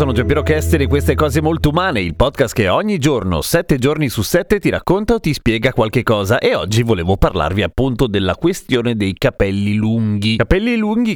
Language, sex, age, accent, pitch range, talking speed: Italian, male, 30-49, native, 110-150 Hz, 190 wpm